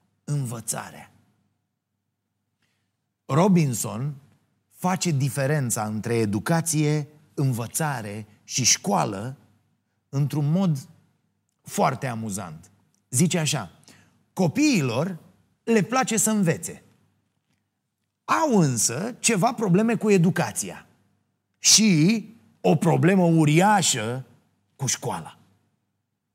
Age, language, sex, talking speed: 30-49, Romanian, male, 75 wpm